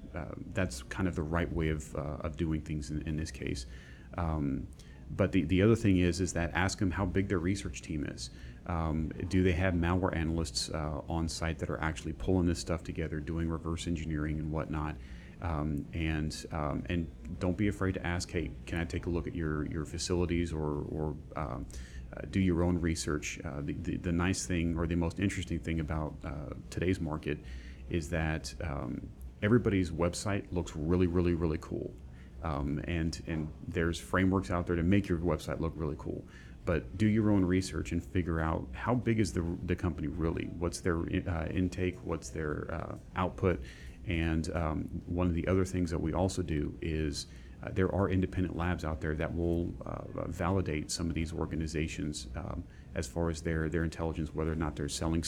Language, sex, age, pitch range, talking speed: English, male, 30-49, 75-90 Hz, 200 wpm